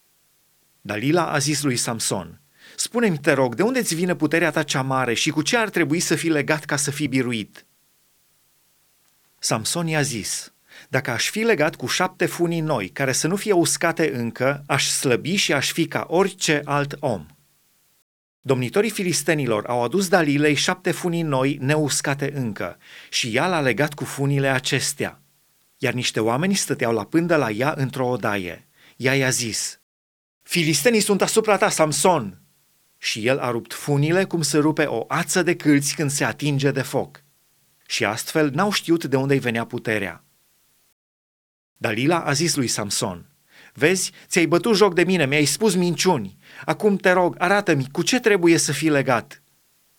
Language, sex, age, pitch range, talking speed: Romanian, male, 30-49, 130-175 Hz, 165 wpm